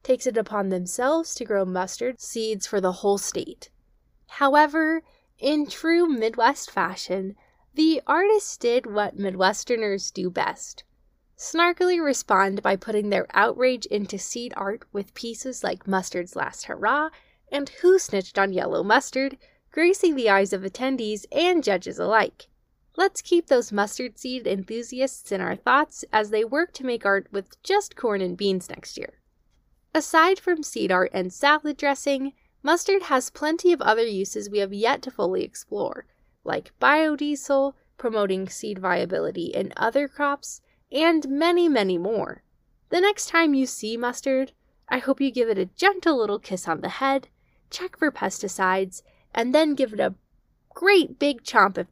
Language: English